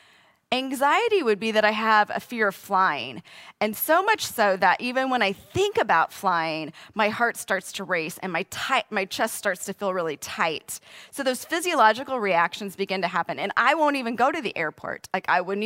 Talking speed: 205 wpm